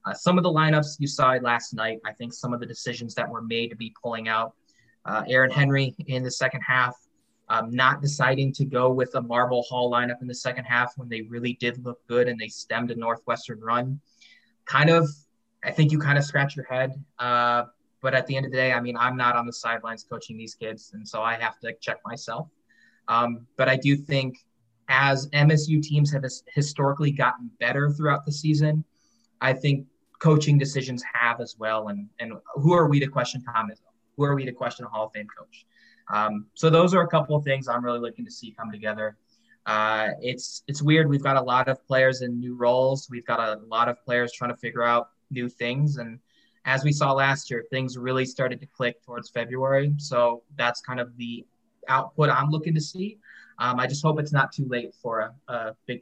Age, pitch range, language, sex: 20-39, 120-140 Hz, English, male